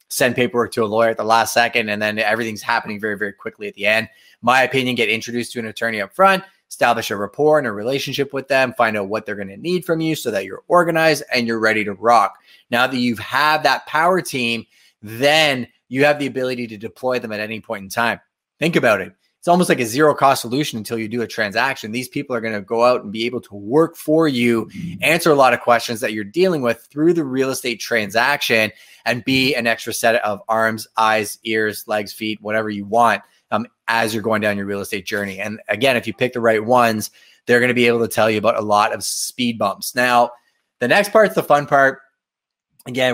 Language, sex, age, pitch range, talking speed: English, male, 20-39, 110-135 Hz, 235 wpm